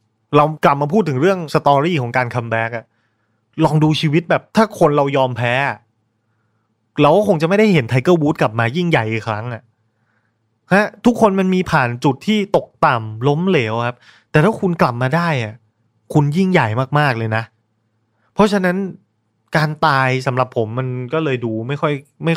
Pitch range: 115-150 Hz